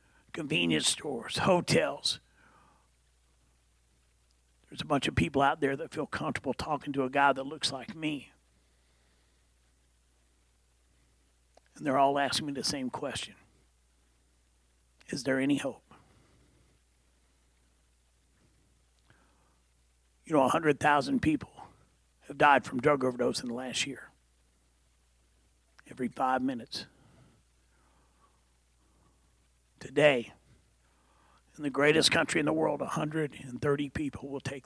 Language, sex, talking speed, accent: English, male, 110 wpm, American